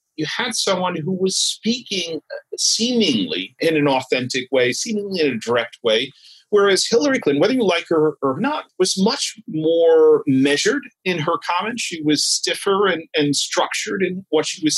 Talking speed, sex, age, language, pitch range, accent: 170 wpm, male, 40-59, English, 145-220 Hz, American